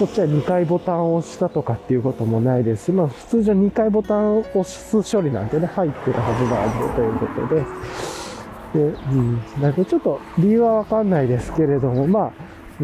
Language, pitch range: Japanese, 110-165 Hz